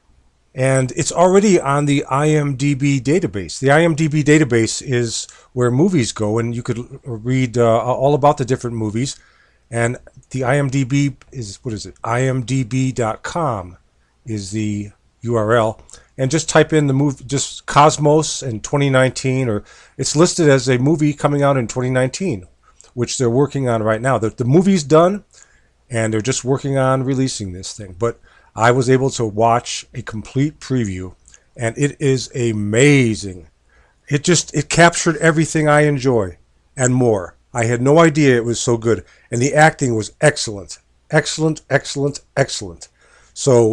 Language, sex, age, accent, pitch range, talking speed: English, male, 40-59, American, 115-145 Hz, 155 wpm